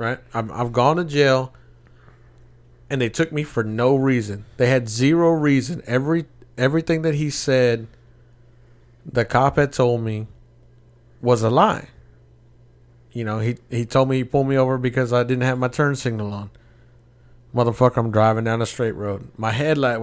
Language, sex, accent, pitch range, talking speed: English, male, American, 115-135 Hz, 170 wpm